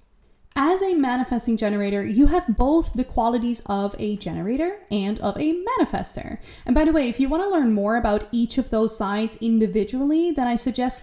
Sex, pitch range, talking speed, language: female, 215-285 Hz, 190 wpm, English